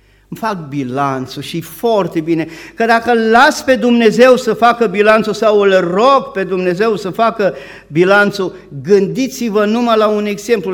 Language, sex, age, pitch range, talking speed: Romanian, male, 50-69, 160-235 Hz, 150 wpm